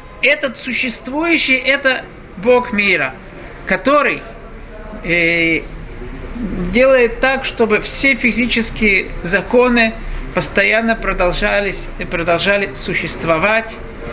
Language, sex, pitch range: Russian, male, 175-230 Hz